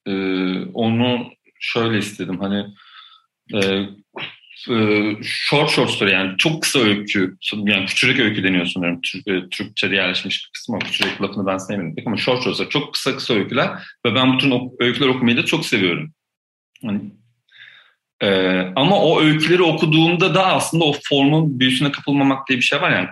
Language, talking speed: Turkish, 160 wpm